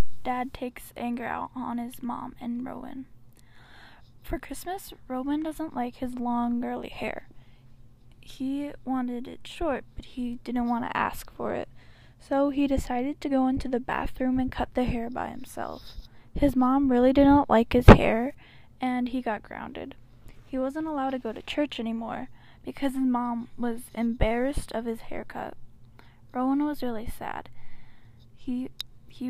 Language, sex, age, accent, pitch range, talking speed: English, female, 10-29, American, 225-265 Hz, 160 wpm